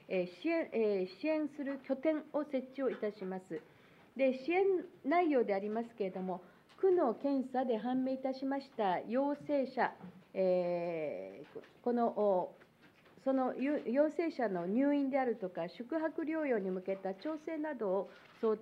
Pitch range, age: 195-290 Hz, 50-69